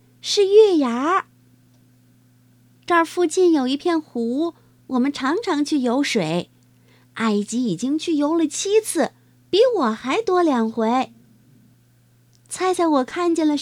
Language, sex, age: Chinese, female, 30-49